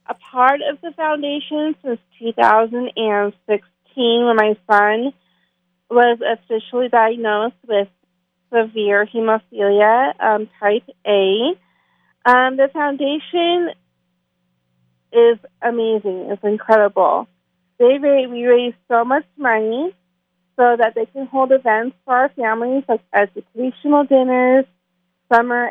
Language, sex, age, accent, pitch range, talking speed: English, female, 30-49, American, 205-255 Hz, 110 wpm